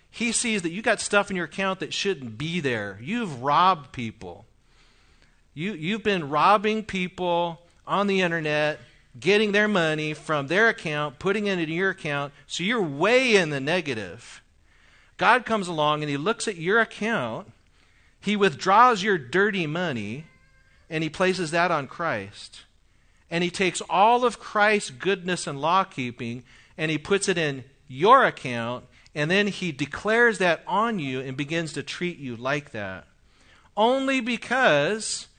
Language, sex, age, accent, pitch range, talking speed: English, male, 40-59, American, 145-200 Hz, 160 wpm